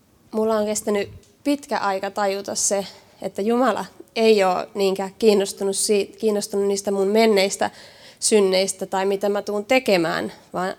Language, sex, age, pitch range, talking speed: Finnish, female, 20-39, 185-215 Hz, 140 wpm